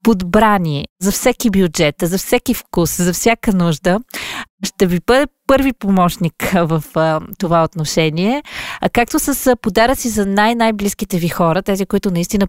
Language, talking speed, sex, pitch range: Bulgarian, 150 wpm, female, 170-220 Hz